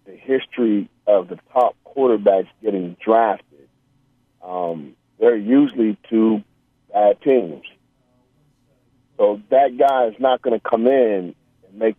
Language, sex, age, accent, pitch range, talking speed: English, male, 40-59, American, 105-130 Hz, 120 wpm